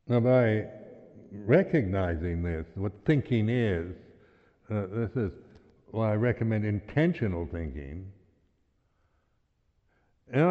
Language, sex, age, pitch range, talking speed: English, male, 60-79, 90-125 Hz, 90 wpm